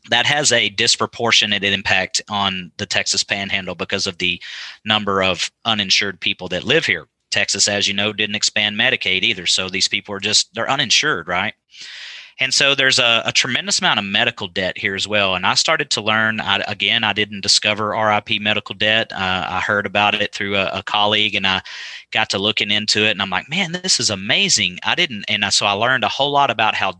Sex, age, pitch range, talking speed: male, 30-49, 100-115 Hz, 210 wpm